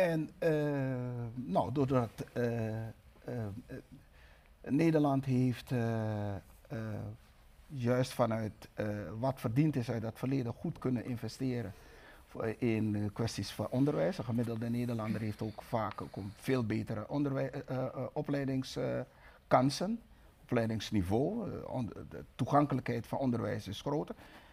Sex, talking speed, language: male, 115 wpm, Dutch